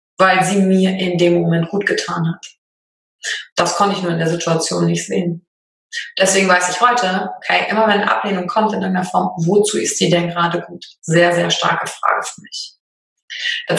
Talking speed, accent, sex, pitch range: 190 wpm, German, female, 175-215 Hz